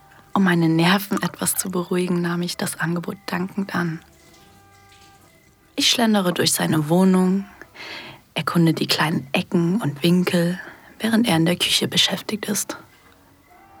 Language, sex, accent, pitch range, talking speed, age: German, female, German, 170-200 Hz, 130 wpm, 30-49